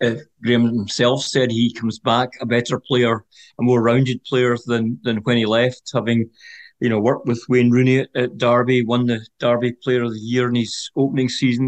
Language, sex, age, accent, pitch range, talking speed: English, male, 40-59, British, 120-135 Hz, 200 wpm